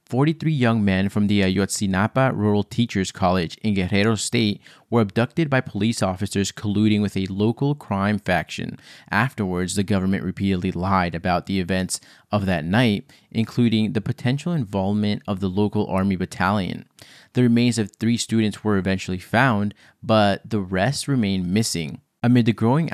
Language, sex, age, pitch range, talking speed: English, male, 20-39, 95-115 Hz, 155 wpm